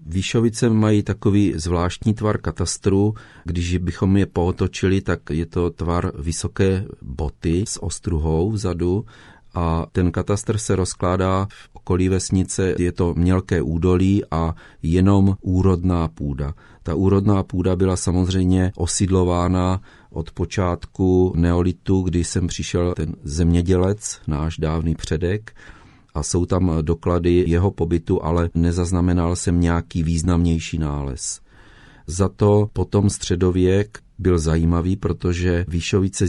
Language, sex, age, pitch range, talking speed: Czech, male, 40-59, 85-95 Hz, 120 wpm